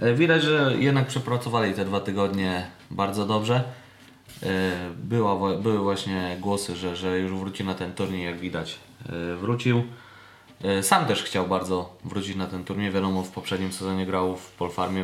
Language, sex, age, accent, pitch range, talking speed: Polish, male, 20-39, native, 95-120 Hz, 150 wpm